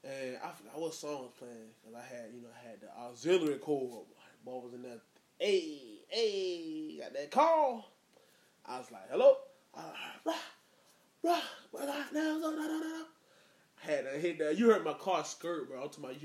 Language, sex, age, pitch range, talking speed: English, male, 20-39, 120-200 Hz, 155 wpm